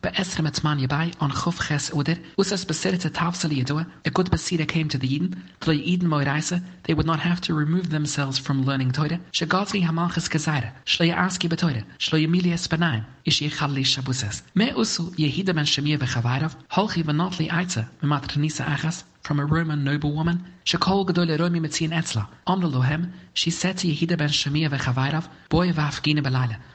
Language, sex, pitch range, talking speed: English, male, 140-175 Hz, 170 wpm